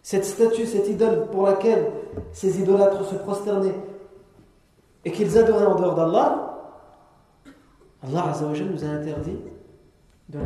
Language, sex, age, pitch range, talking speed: French, male, 40-59, 175-235 Hz, 125 wpm